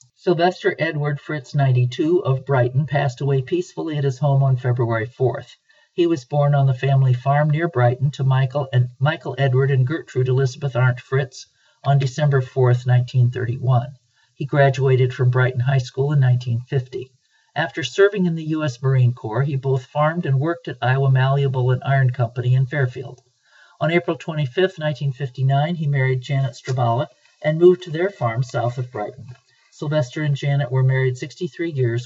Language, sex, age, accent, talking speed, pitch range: English, male, 50-69, American, 165 wpm, 125-150 Hz